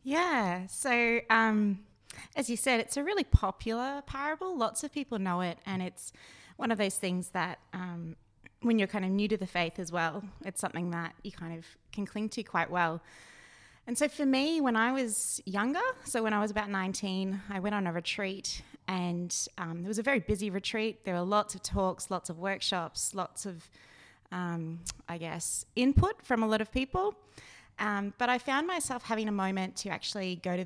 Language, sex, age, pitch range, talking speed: English, female, 20-39, 175-230 Hz, 200 wpm